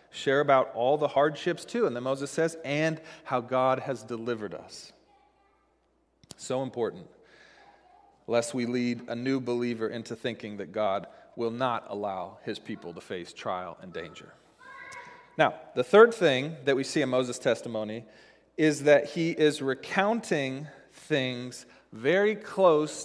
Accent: American